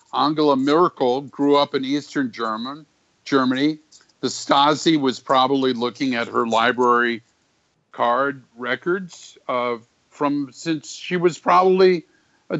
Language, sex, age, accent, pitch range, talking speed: English, male, 50-69, American, 120-145 Hz, 120 wpm